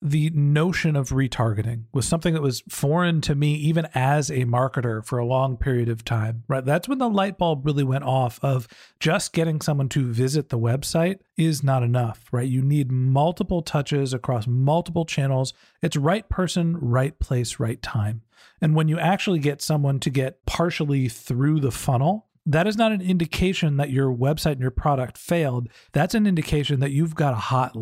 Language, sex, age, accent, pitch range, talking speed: English, male, 40-59, American, 135-175 Hz, 190 wpm